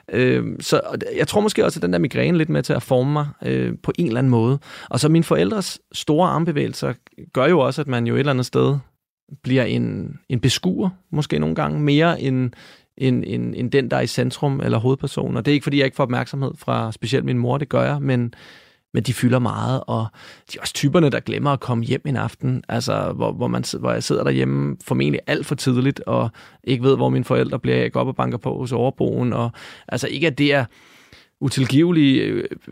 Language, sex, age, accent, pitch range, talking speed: Danish, male, 30-49, native, 120-145 Hz, 220 wpm